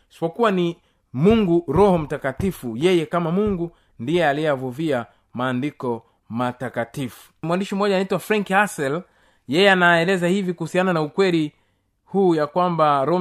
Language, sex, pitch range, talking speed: Swahili, male, 150-215 Hz, 125 wpm